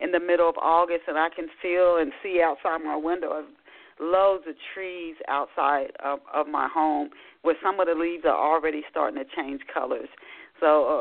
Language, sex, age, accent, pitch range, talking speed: English, female, 40-59, American, 155-195 Hz, 190 wpm